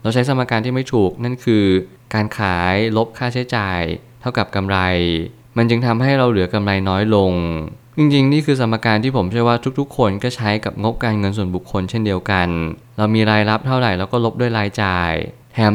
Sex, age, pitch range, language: male, 20-39, 100-120 Hz, Thai